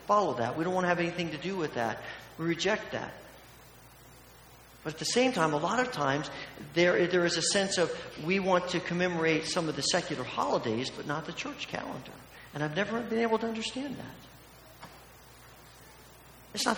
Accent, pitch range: American, 155-200 Hz